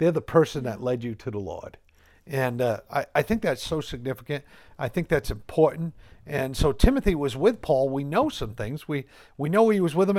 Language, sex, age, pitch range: English, male, 50-69, 130-175 Hz